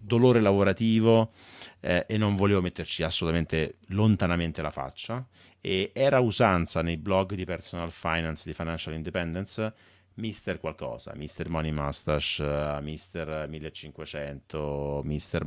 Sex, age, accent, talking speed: male, 30-49, native, 115 wpm